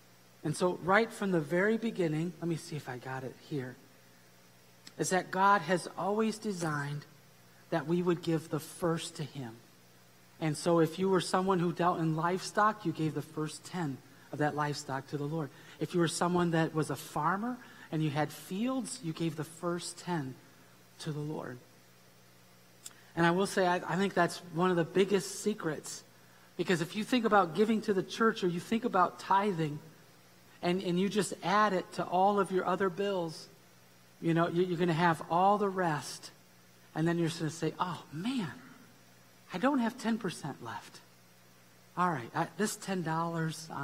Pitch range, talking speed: 120-180 Hz, 185 wpm